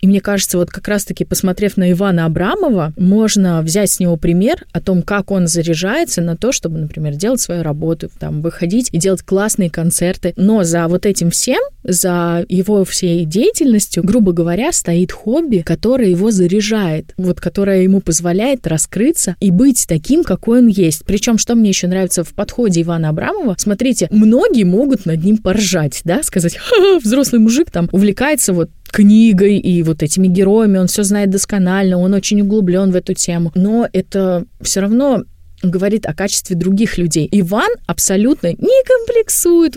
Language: Russian